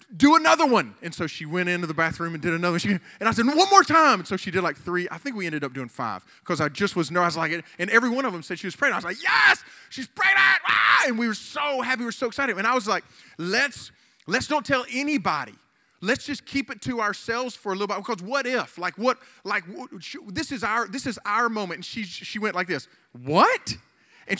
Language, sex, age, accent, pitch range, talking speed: English, male, 20-39, American, 180-260 Hz, 265 wpm